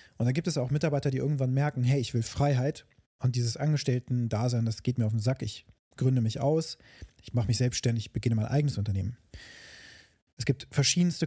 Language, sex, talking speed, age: German, male, 195 wpm, 30-49